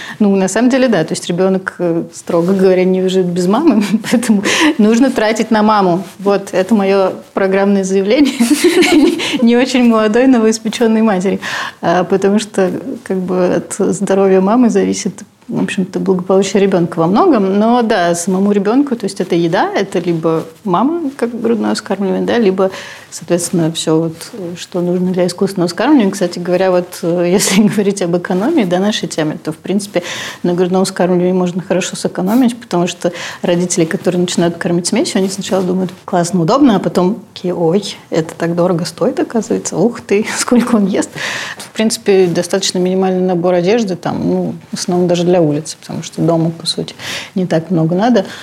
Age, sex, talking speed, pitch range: 30-49, female, 165 wpm, 175-215 Hz